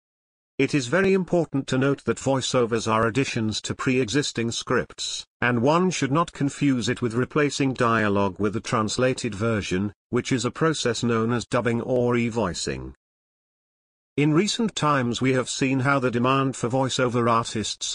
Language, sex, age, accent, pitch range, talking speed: English, male, 50-69, British, 110-135 Hz, 165 wpm